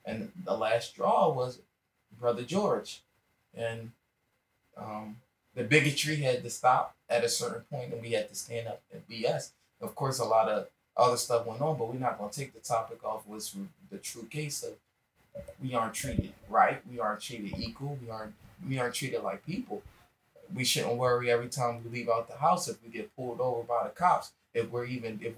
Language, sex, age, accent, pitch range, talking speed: English, male, 20-39, American, 115-145 Hz, 205 wpm